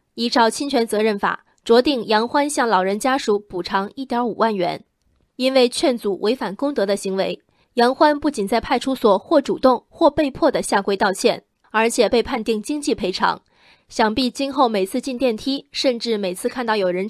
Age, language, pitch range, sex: 20-39, Chinese, 215-275 Hz, female